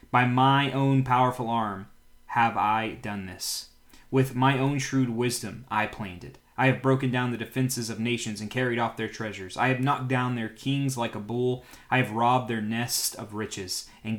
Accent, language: American, English